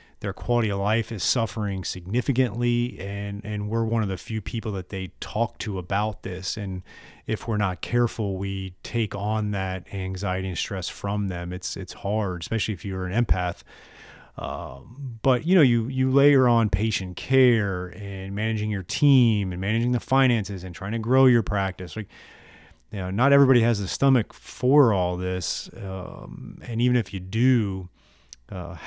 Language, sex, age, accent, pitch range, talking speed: English, male, 30-49, American, 95-115 Hz, 175 wpm